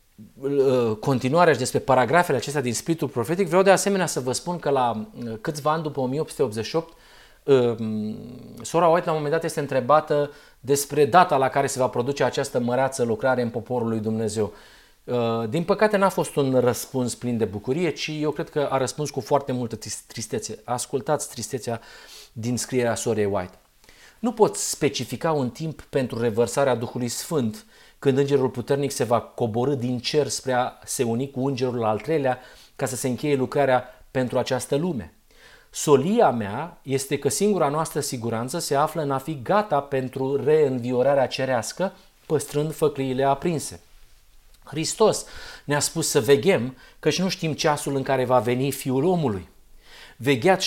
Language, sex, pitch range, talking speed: Romanian, male, 125-155 Hz, 160 wpm